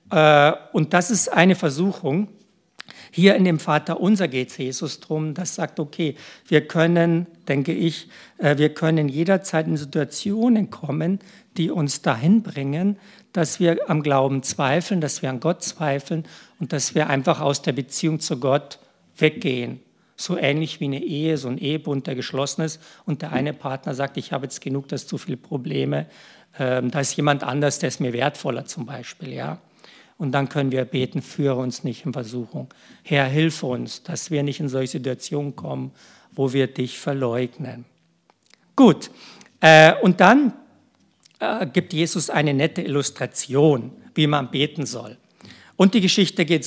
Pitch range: 140-175 Hz